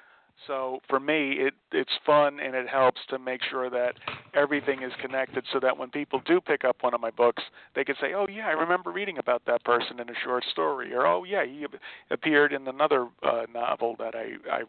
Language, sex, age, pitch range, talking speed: English, male, 40-59, 125-140 Hz, 215 wpm